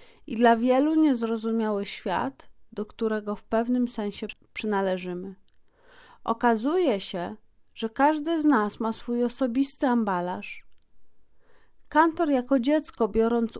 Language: Polish